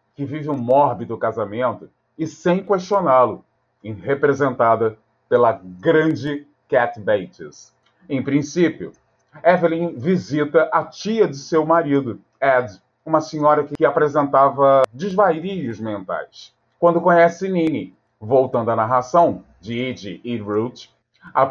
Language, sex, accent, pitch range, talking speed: Portuguese, male, Brazilian, 125-165 Hz, 110 wpm